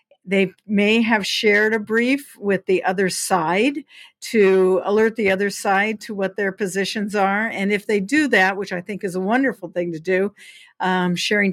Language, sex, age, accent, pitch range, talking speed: English, female, 50-69, American, 195-230 Hz, 185 wpm